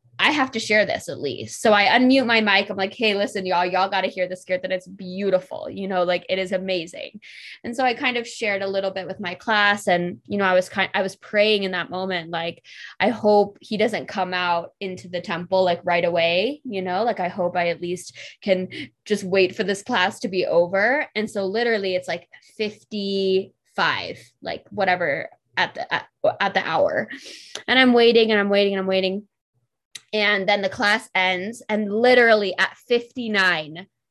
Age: 20-39